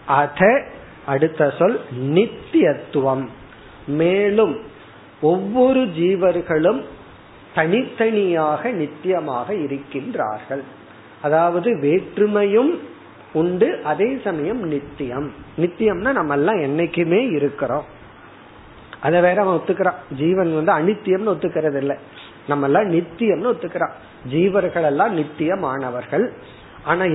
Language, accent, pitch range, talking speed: Tamil, native, 150-200 Hz, 75 wpm